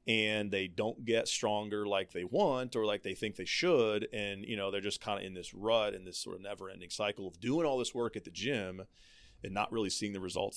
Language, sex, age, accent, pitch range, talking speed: English, male, 30-49, American, 95-110 Hz, 250 wpm